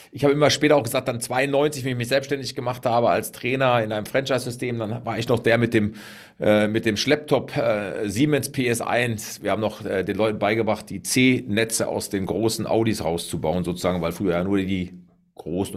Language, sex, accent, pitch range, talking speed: German, male, German, 110-135 Hz, 205 wpm